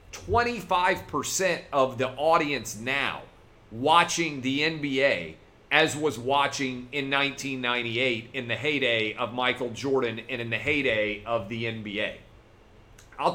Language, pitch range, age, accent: English, 115-145 Hz, 40-59, American